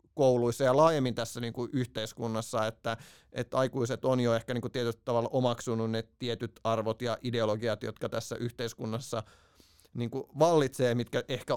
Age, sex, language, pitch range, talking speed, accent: 30-49, male, Finnish, 115-130 Hz, 155 wpm, native